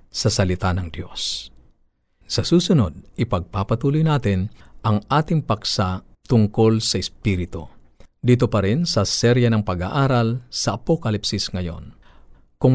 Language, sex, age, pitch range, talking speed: Filipino, male, 50-69, 100-130 Hz, 120 wpm